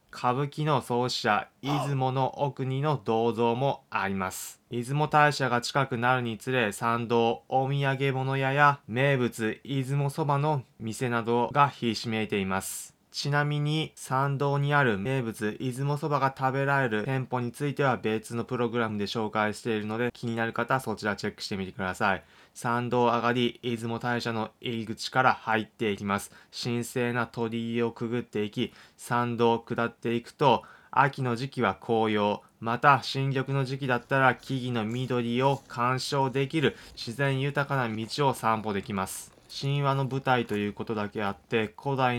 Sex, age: male, 20-39